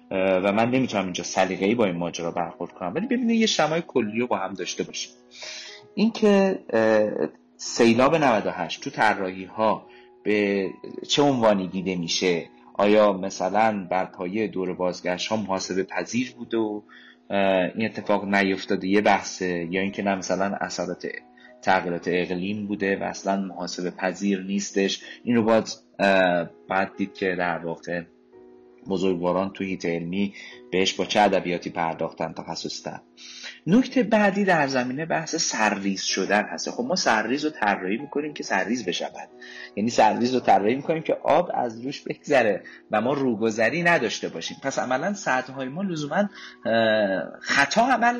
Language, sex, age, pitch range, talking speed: Persian, male, 30-49, 95-130 Hz, 150 wpm